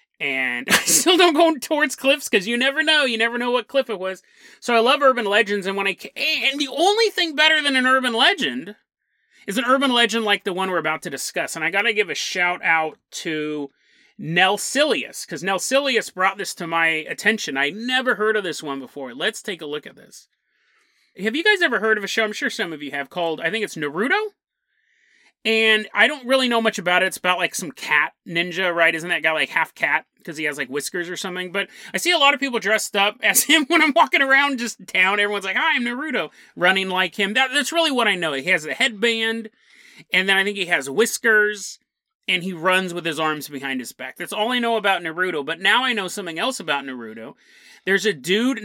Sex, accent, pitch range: male, American, 180-260 Hz